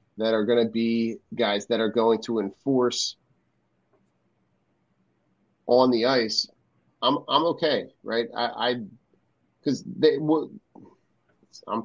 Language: English